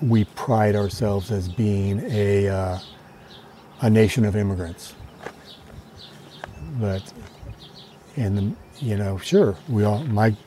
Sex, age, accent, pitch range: male, 60-79, American, 105-130 Hz